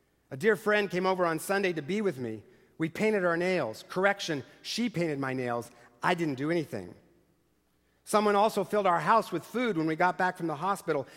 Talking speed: 205 wpm